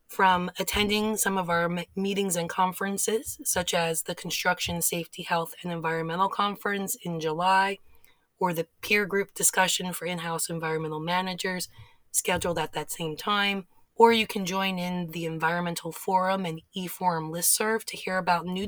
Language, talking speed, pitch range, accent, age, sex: English, 155 wpm, 165-195 Hz, American, 20-39, female